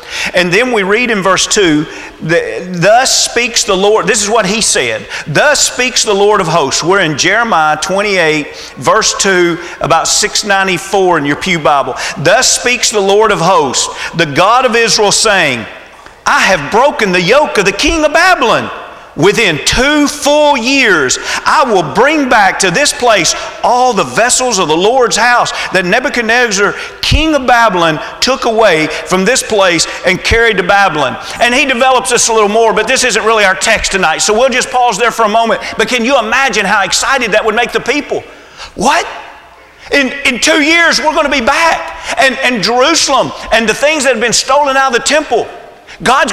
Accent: American